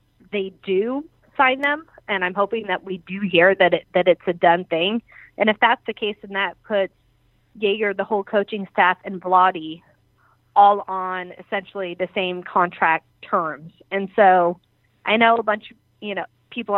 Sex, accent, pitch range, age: female, American, 175-215 Hz, 30-49